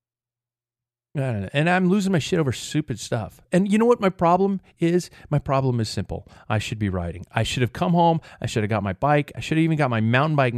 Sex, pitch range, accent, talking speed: male, 115-165 Hz, American, 240 wpm